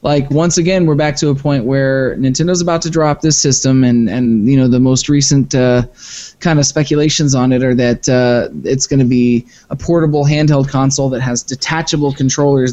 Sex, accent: male, American